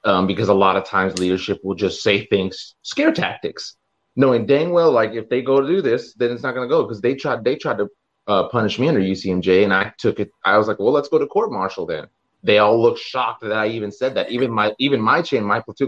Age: 30-49